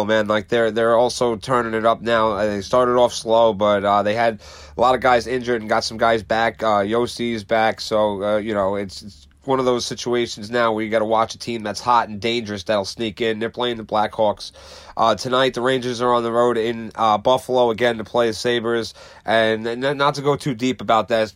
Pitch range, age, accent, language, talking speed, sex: 110-125 Hz, 30-49, American, English, 235 wpm, male